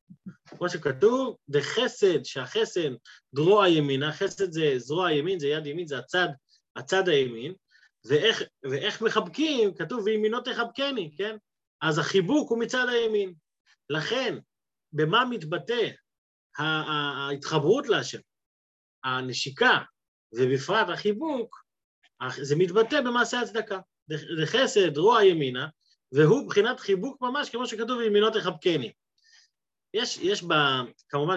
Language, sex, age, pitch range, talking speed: Hebrew, male, 30-49, 145-225 Hz, 110 wpm